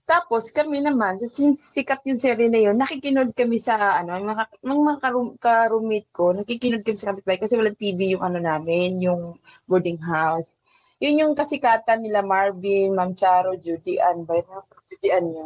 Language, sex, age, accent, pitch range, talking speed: Filipino, female, 20-39, native, 175-250 Hz, 150 wpm